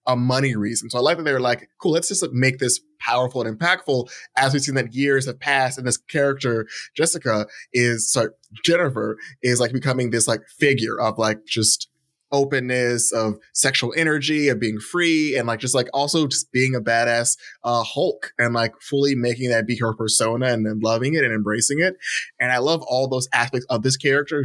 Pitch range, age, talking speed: 115-140 Hz, 20-39, 205 wpm